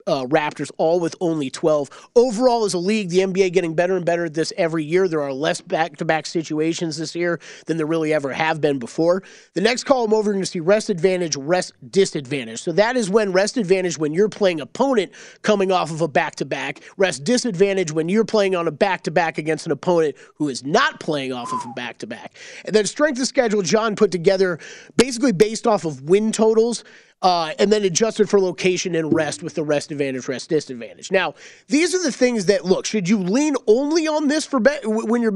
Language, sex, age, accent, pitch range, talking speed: English, male, 30-49, American, 165-225 Hz, 210 wpm